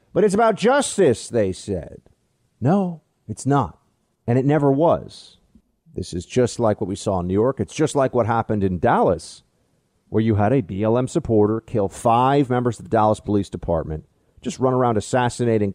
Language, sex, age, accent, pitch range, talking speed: English, male, 40-59, American, 120-185 Hz, 185 wpm